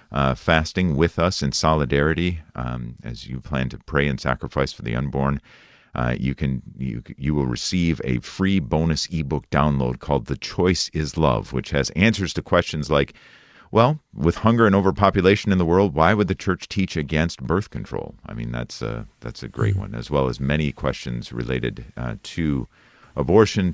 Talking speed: 185 wpm